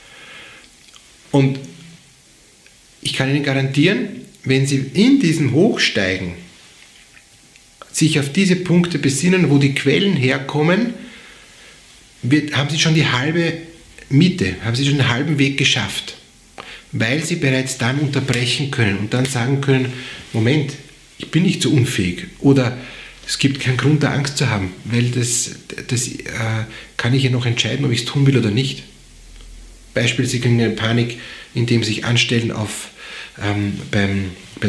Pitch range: 120-150 Hz